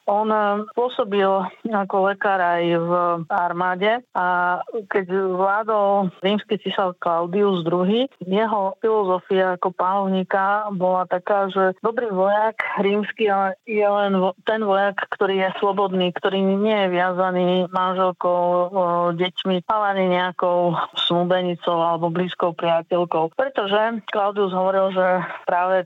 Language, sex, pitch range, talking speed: Slovak, female, 180-205 Hz, 110 wpm